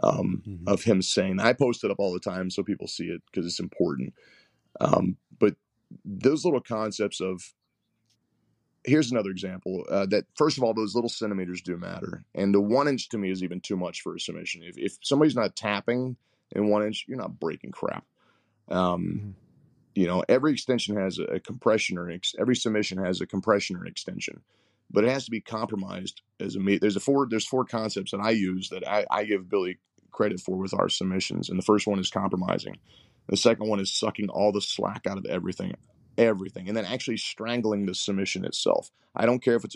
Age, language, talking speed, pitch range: 30-49, English, 210 wpm, 95-110 Hz